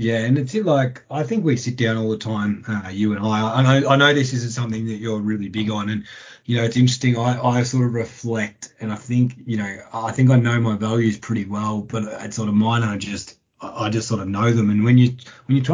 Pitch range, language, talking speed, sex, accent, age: 105-125 Hz, English, 265 wpm, male, Australian, 20-39